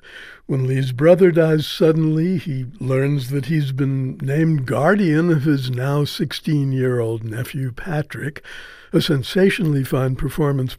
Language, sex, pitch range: English, male, 135-165 Hz